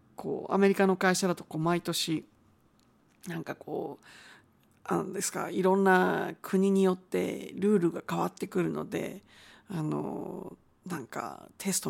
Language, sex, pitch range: Japanese, female, 165-235 Hz